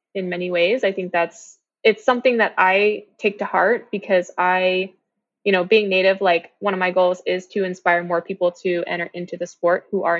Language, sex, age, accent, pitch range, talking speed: English, female, 20-39, American, 175-195 Hz, 210 wpm